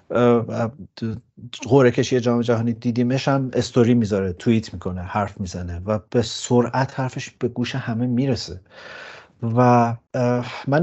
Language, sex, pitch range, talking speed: Persian, male, 100-125 Hz, 120 wpm